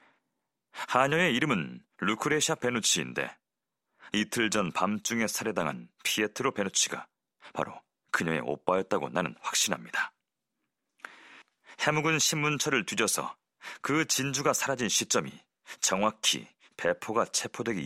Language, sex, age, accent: Korean, male, 40-59, native